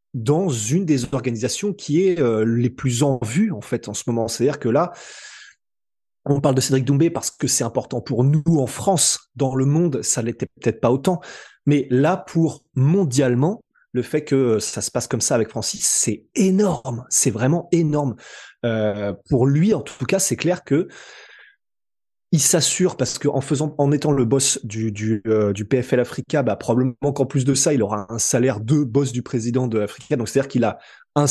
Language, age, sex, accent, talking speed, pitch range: French, 20-39, male, French, 200 wpm, 125-160 Hz